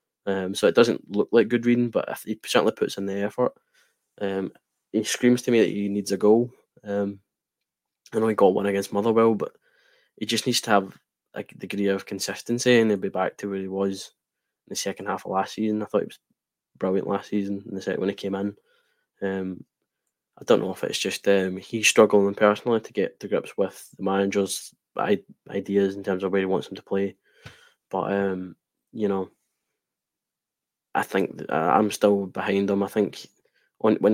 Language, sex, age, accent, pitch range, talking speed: English, male, 20-39, British, 95-105 Hz, 200 wpm